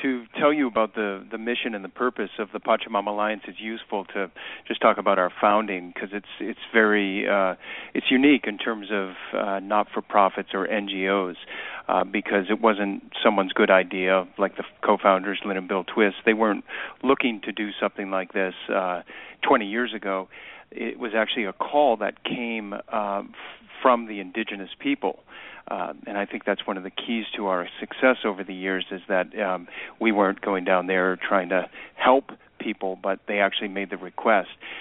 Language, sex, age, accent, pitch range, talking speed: English, male, 40-59, American, 95-115 Hz, 185 wpm